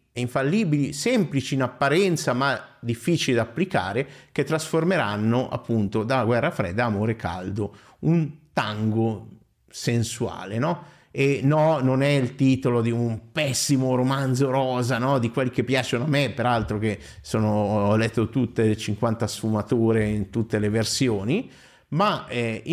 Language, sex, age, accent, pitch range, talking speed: Italian, male, 50-69, native, 115-150 Hz, 145 wpm